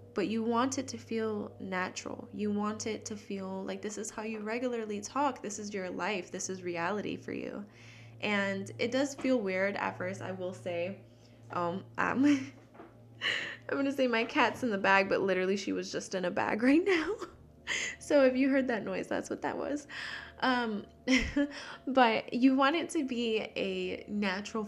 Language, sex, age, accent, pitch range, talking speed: English, female, 10-29, American, 180-225 Hz, 190 wpm